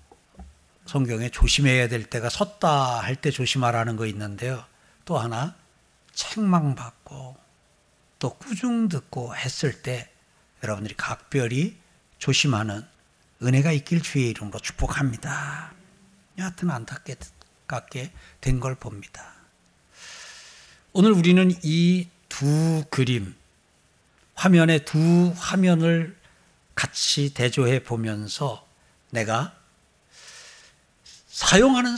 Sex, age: male, 60-79